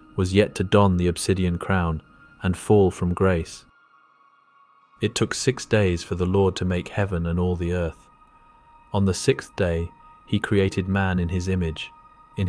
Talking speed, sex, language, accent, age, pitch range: 175 wpm, male, English, British, 30-49, 90-110 Hz